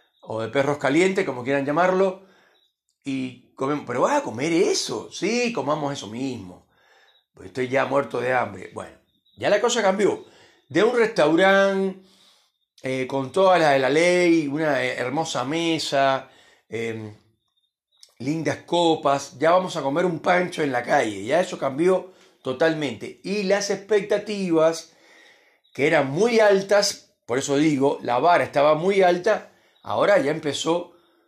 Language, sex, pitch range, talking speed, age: Spanish, male, 140-185 Hz, 145 wpm, 40-59